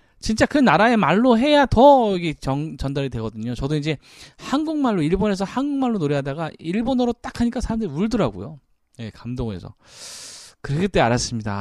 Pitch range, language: 115-170 Hz, Korean